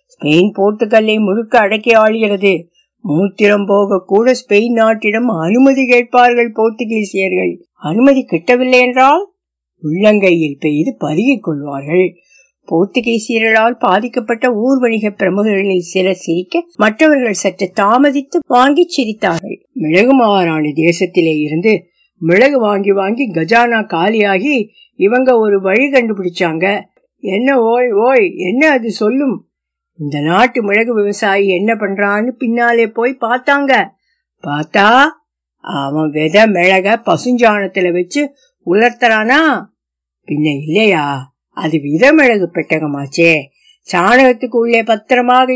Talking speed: 60 wpm